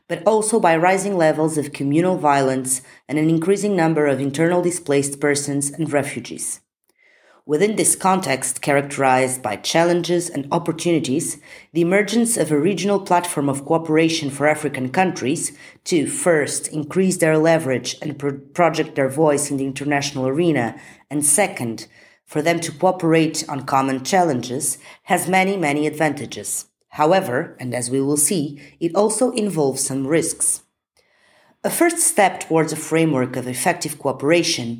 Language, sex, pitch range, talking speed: English, female, 140-175 Hz, 145 wpm